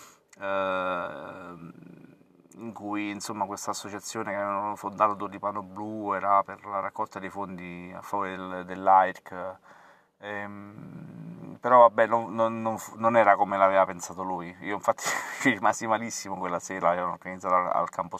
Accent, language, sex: native, Italian, male